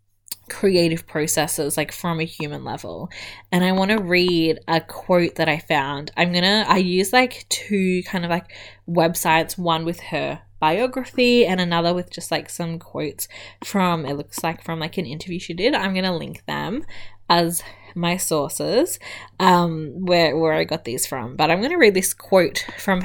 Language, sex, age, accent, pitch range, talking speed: English, female, 10-29, Australian, 160-190 Hz, 185 wpm